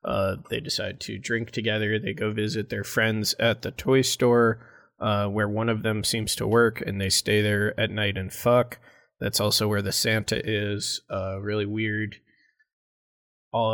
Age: 20-39